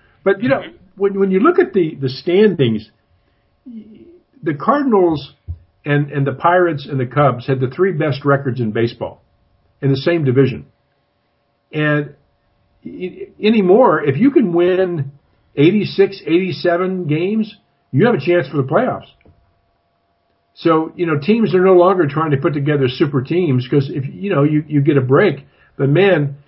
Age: 50-69